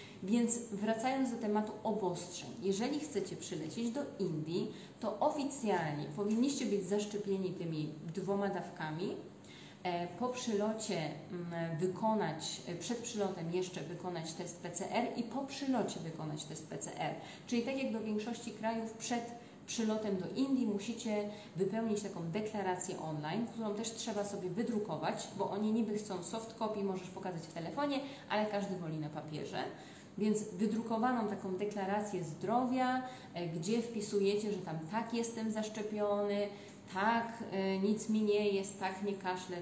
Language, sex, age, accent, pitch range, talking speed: Polish, female, 30-49, native, 180-225 Hz, 135 wpm